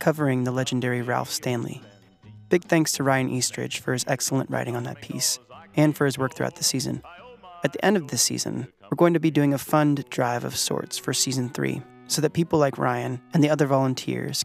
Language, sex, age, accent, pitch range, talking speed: English, male, 20-39, American, 125-150 Hz, 215 wpm